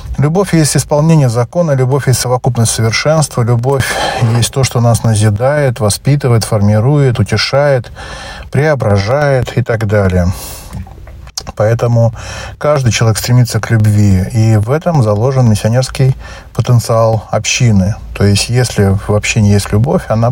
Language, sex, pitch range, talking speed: Russian, male, 100-125 Hz, 125 wpm